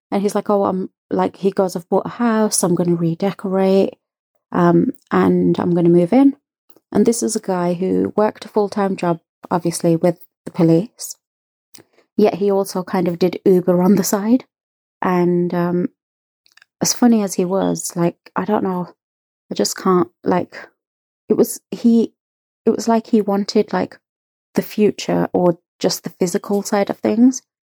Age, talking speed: 30-49, 175 wpm